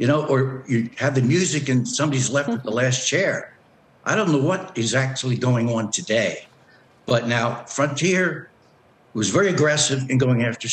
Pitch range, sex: 125-150 Hz, male